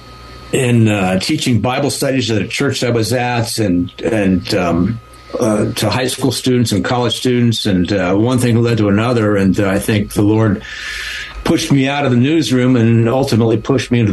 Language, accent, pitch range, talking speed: English, American, 105-125 Hz, 200 wpm